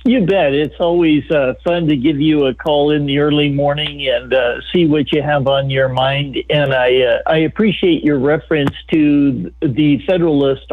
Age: 50-69